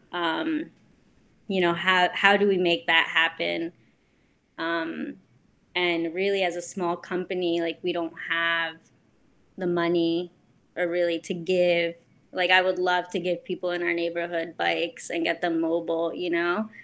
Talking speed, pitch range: 155 wpm, 165-180 Hz